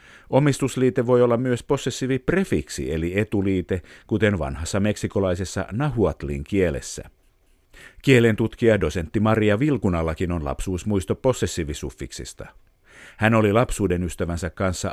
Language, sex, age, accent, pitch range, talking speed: Finnish, male, 50-69, native, 90-120 Hz, 100 wpm